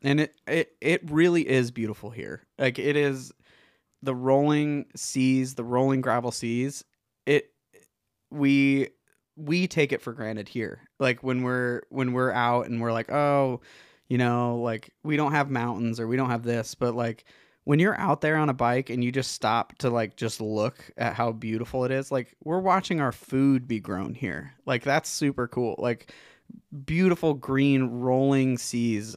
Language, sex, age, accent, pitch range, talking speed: English, male, 20-39, American, 115-140 Hz, 180 wpm